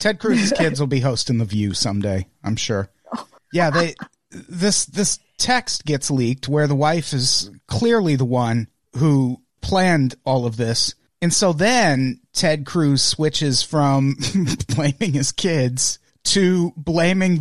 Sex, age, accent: male, 30-49, American